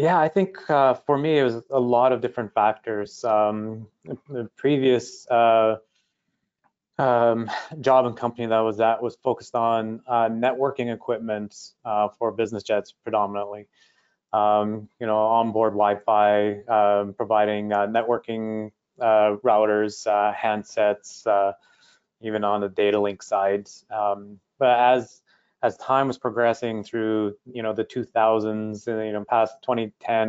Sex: male